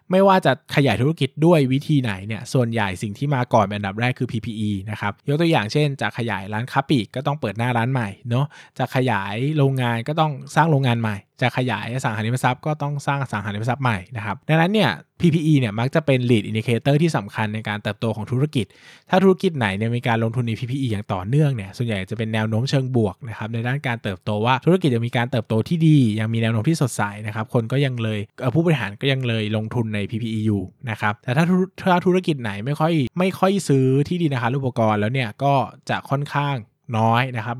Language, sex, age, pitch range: Thai, male, 20-39, 110-145 Hz